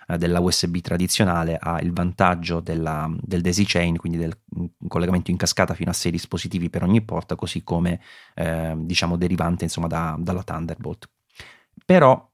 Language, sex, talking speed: Italian, male, 145 wpm